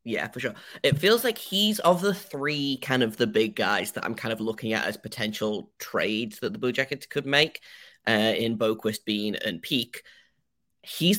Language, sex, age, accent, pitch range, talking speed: English, male, 10-29, British, 115-145 Hz, 200 wpm